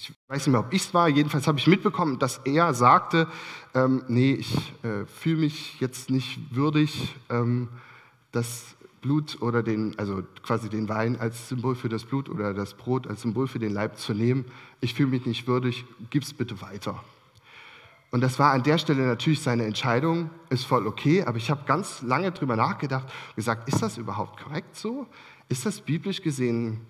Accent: German